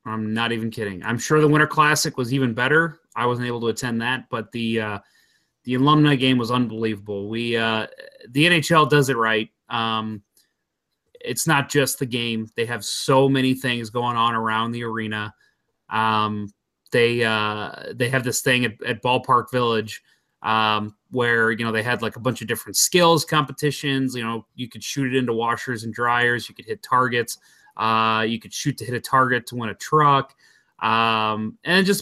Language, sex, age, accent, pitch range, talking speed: English, male, 30-49, American, 115-135 Hz, 190 wpm